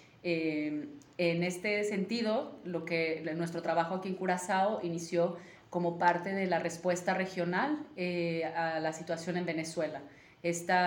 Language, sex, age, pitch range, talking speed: Spanish, female, 30-49, 160-180 Hz, 140 wpm